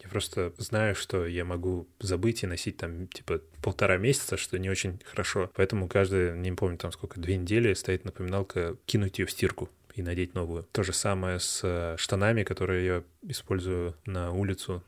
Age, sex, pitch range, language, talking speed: 20-39, male, 95-110 Hz, Russian, 175 wpm